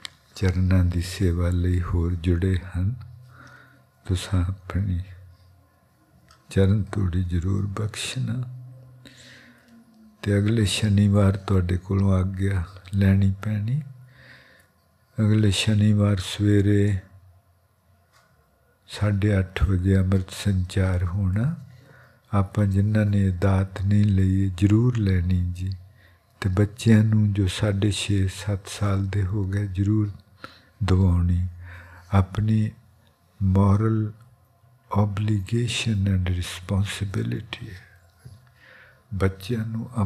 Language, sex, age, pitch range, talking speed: English, male, 60-79, 95-110 Hz, 75 wpm